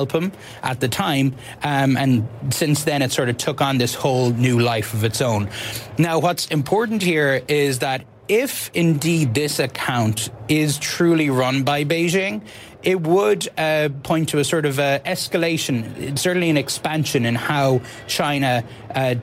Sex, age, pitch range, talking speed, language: male, 30-49, 120-150 Hz, 160 wpm, English